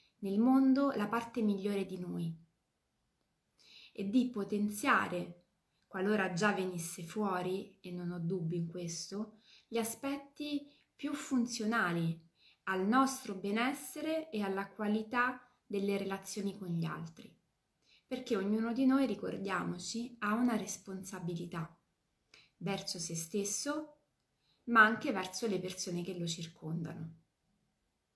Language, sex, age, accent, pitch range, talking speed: Italian, female, 20-39, native, 185-220 Hz, 115 wpm